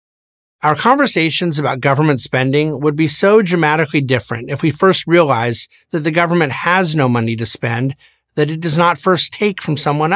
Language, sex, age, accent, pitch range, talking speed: English, male, 50-69, American, 135-185 Hz, 175 wpm